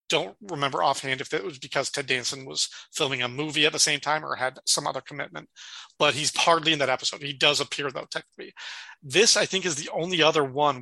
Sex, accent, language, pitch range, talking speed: male, American, English, 140-175 Hz, 230 wpm